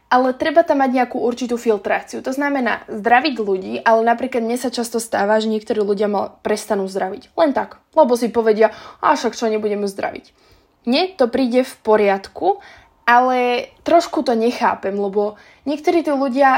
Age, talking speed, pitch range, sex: 20-39, 165 wpm, 215-275 Hz, female